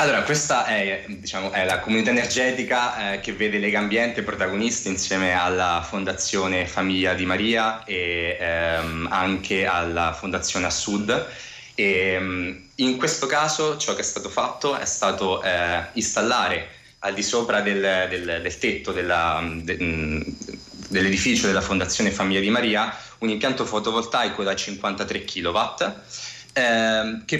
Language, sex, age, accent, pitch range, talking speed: Italian, male, 20-39, native, 90-110 Hz, 135 wpm